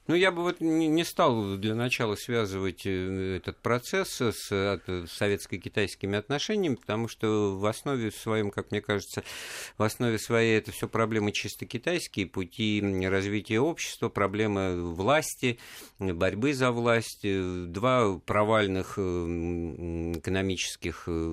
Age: 50-69